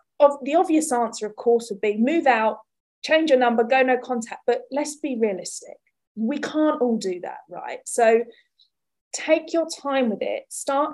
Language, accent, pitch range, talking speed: English, British, 230-305 Hz, 175 wpm